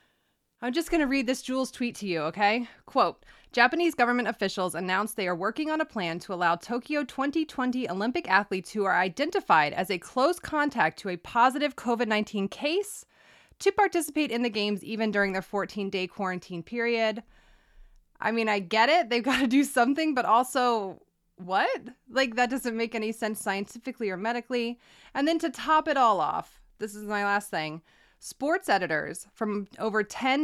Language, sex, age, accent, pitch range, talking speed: English, female, 20-39, American, 195-250 Hz, 175 wpm